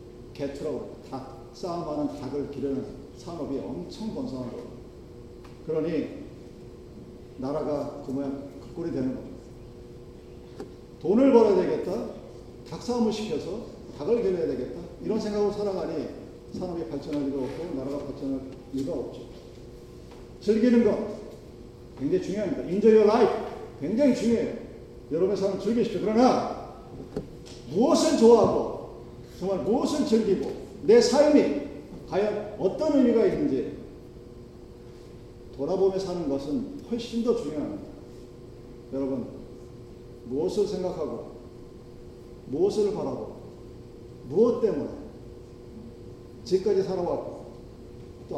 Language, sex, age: Korean, male, 40-59